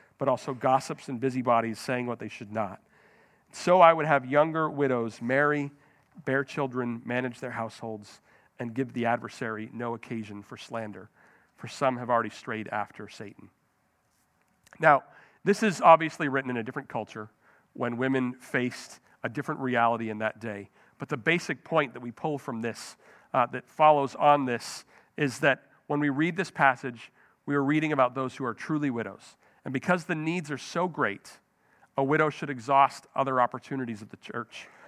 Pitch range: 120-150 Hz